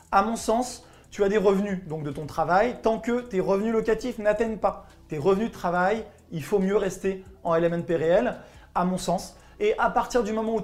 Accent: French